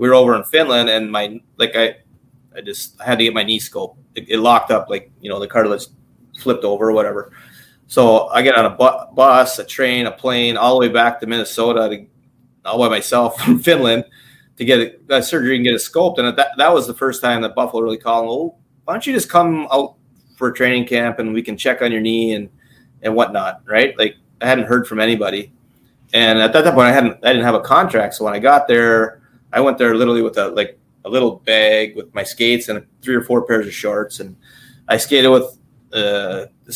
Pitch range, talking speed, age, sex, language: 110-130 Hz, 230 wpm, 30-49, male, English